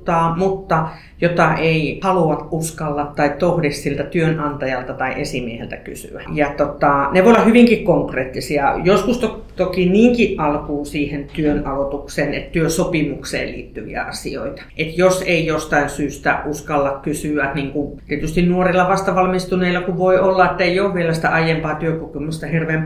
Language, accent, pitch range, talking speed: Finnish, native, 140-170 Hz, 140 wpm